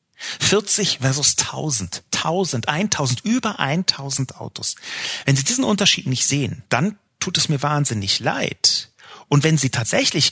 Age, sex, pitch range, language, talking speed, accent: 40-59, male, 110-165 Hz, German, 140 wpm, German